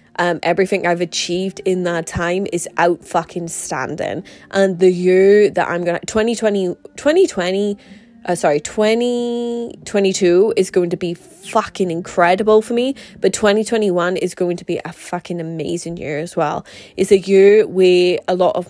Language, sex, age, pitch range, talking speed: English, female, 10-29, 175-195 Hz, 155 wpm